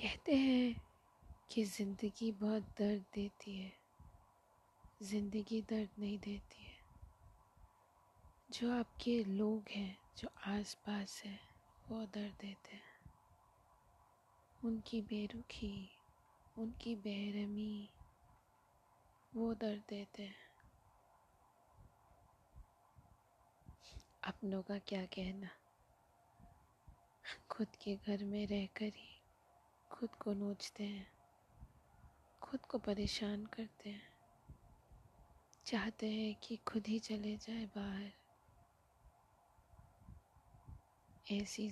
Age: 20-39